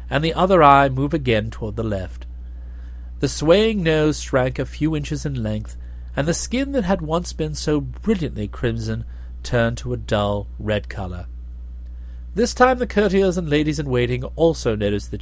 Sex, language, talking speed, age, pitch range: male, English, 170 wpm, 40-59, 90-145 Hz